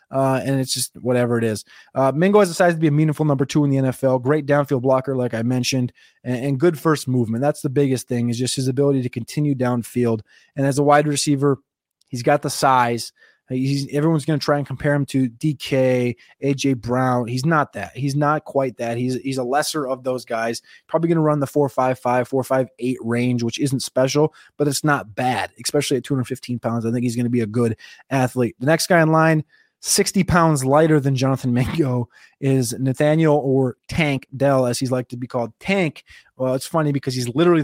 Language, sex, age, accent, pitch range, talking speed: English, male, 20-39, American, 125-150 Hz, 225 wpm